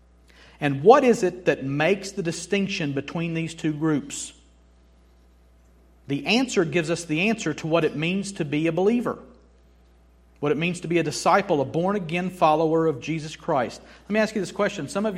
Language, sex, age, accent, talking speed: English, male, 50-69, American, 185 wpm